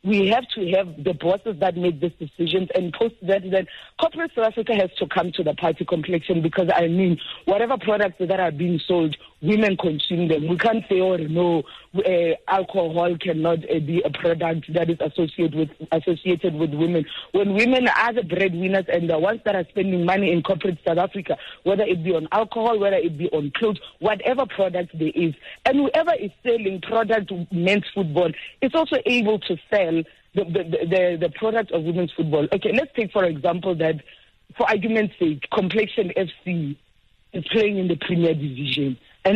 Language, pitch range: English, 165-205 Hz